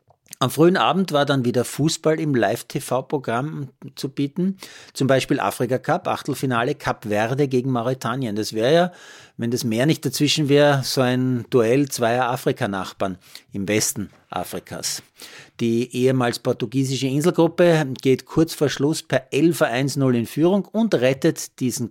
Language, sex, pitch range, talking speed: German, male, 120-150 Hz, 140 wpm